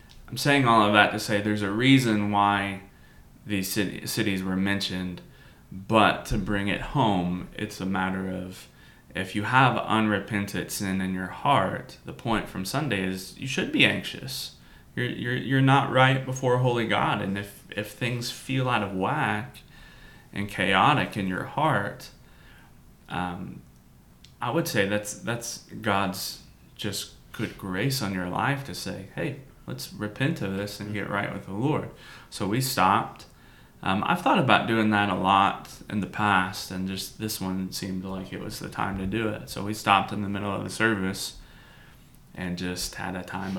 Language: English